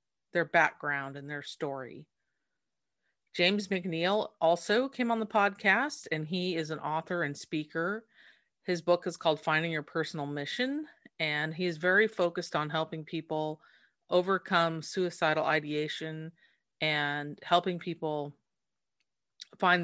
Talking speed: 125 wpm